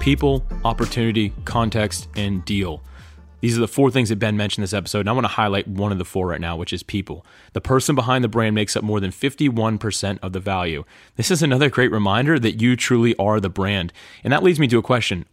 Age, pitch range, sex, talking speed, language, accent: 30-49, 100-120 Hz, male, 235 wpm, English, American